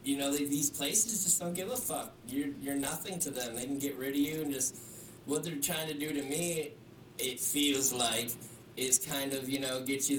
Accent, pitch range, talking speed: American, 130-160 Hz, 230 wpm